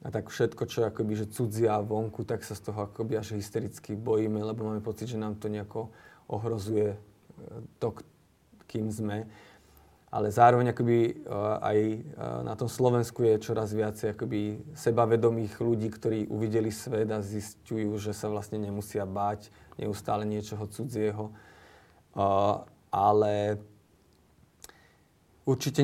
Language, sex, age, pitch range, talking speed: Slovak, male, 20-39, 105-115 Hz, 125 wpm